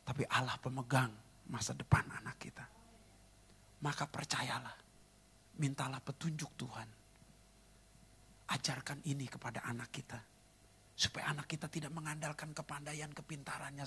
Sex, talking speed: male, 105 wpm